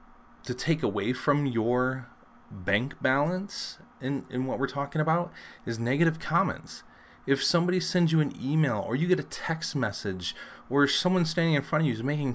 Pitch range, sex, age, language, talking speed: 115-155 Hz, male, 30-49, English, 180 wpm